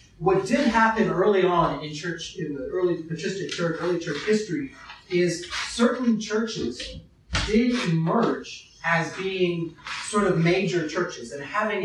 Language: English